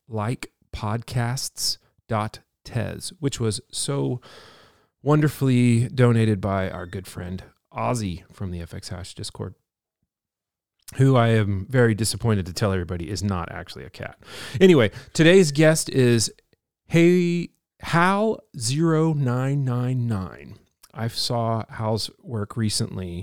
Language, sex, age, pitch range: English, male, 40-59, 100-130 Hz